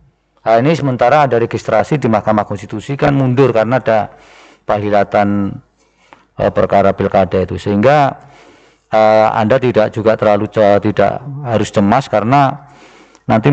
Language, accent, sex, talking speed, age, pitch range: Indonesian, native, male, 130 wpm, 40-59, 100-125 Hz